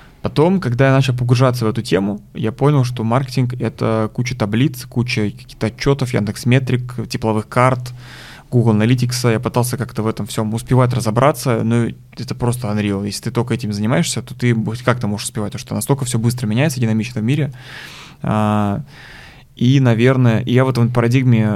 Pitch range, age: 110-130 Hz, 20-39